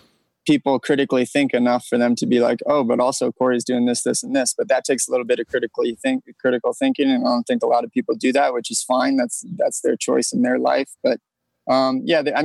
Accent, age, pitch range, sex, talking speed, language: American, 20-39, 130-180 Hz, male, 260 wpm, English